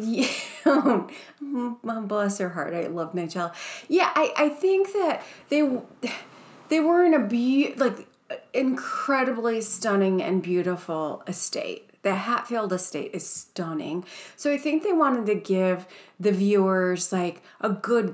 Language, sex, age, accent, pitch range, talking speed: English, female, 30-49, American, 180-245 Hz, 135 wpm